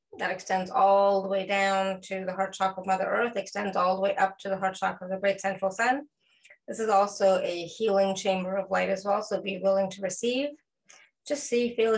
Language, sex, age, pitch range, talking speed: English, female, 30-49, 185-215 Hz, 225 wpm